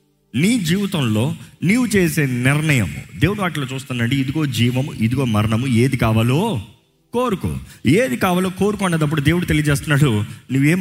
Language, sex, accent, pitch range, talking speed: Telugu, male, native, 120-170 Hz, 120 wpm